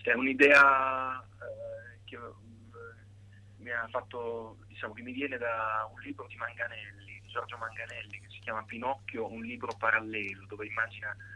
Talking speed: 155 wpm